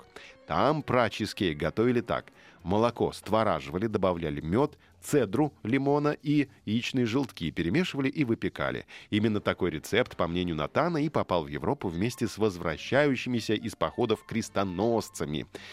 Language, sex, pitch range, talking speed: Russian, male, 90-125 Hz, 120 wpm